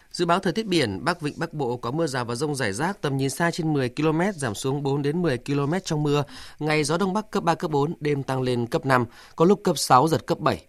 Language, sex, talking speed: Vietnamese, male, 280 wpm